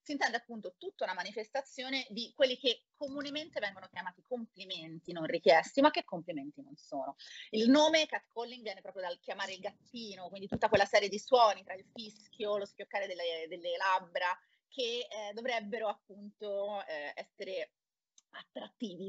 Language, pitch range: Italian, 185-270 Hz